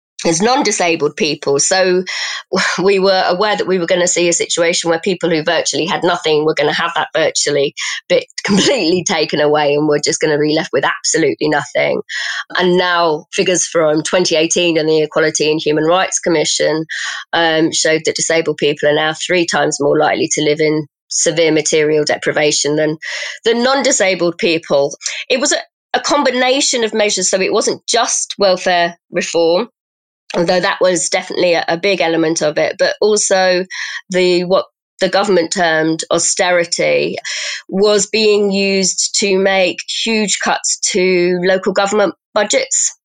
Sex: female